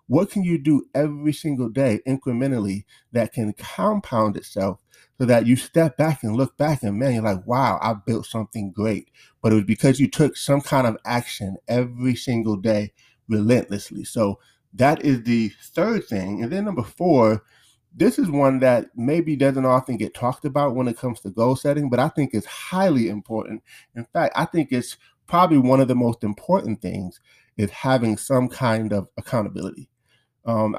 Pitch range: 110-135 Hz